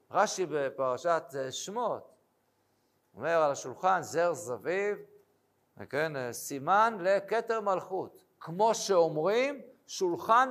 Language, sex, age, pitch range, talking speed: Hebrew, male, 50-69, 165-235 Hz, 85 wpm